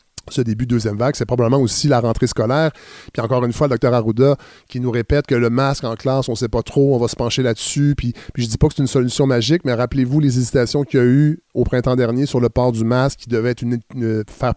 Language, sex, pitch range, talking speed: French, male, 115-140 Hz, 285 wpm